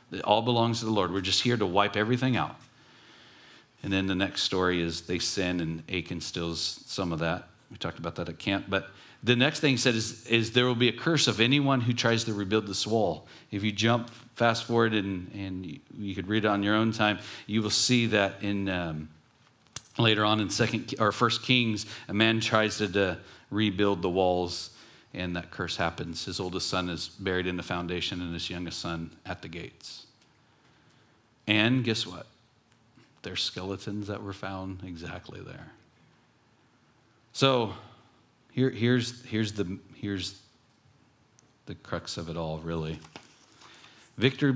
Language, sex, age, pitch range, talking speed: English, male, 40-59, 90-115 Hz, 180 wpm